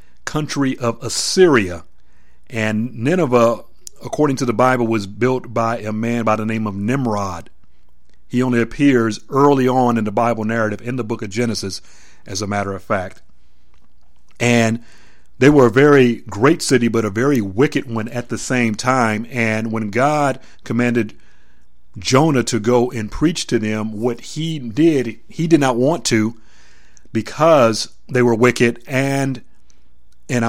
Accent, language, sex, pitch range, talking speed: American, English, male, 105-125 Hz, 155 wpm